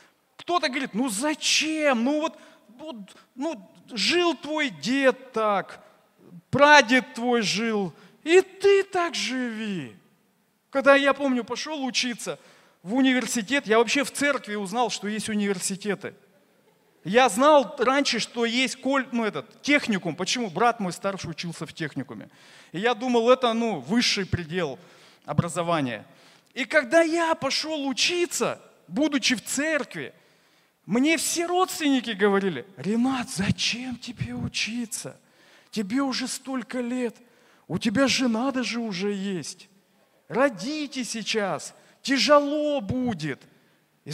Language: Russian